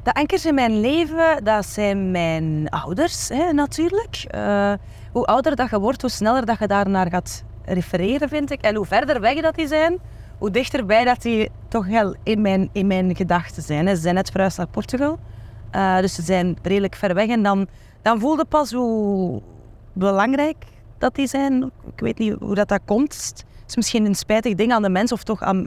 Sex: female